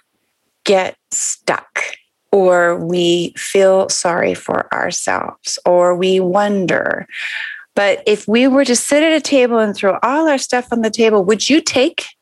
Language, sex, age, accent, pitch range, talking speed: English, female, 30-49, American, 180-230 Hz, 150 wpm